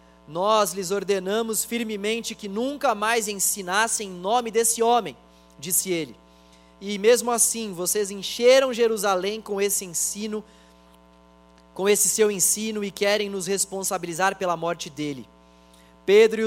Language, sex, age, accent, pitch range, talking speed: Portuguese, male, 20-39, Brazilian, 180-235 Hz, 130 wpm